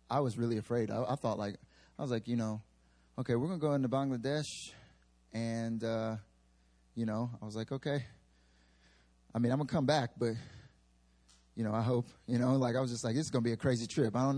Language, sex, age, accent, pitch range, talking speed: English, male, 30-49, American, 115-140 Hz, 220 wpm